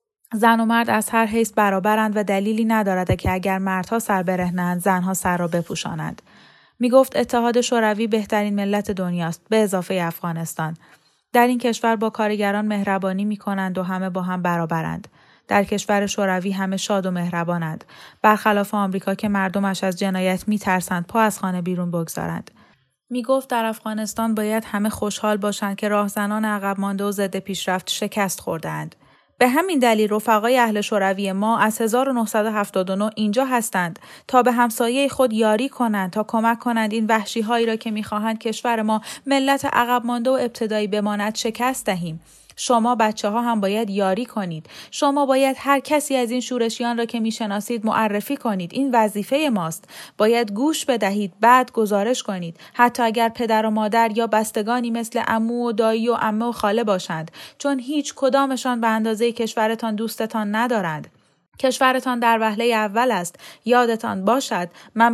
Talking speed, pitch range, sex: 160 wpm, 195-235 Hz, female